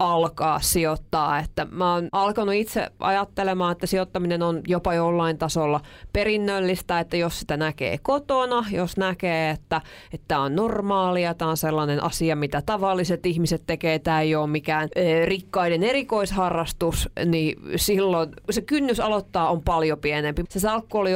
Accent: native